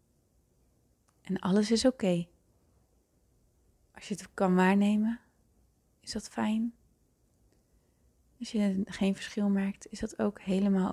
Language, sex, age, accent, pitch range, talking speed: Dutch, female, 20-39, Dutch, 185-215 Hz, 120 wpm